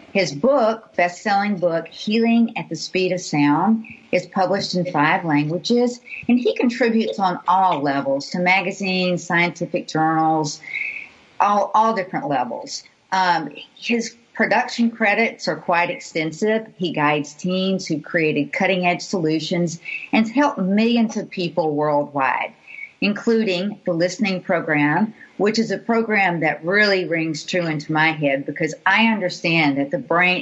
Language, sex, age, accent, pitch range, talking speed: English, female, 50-69, American, 165-225 Hz, 140 wpm